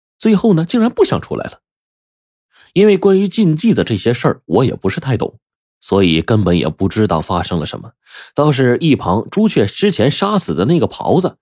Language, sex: Chinese, male